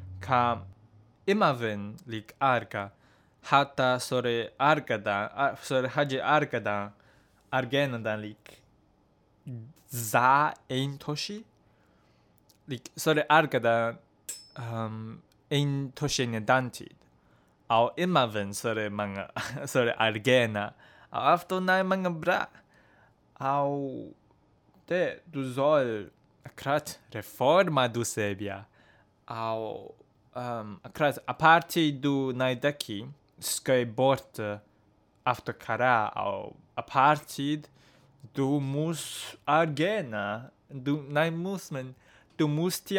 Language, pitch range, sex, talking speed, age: English, 110-145 Hz, male, 90 wpm, 20-39